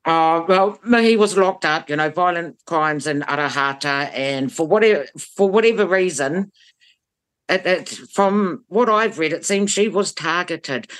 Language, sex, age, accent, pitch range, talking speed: English, female, 60-79, British, 135-180 Hz, 160 wpm